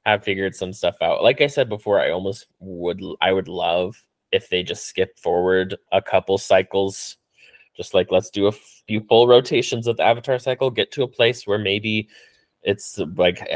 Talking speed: 190 wpm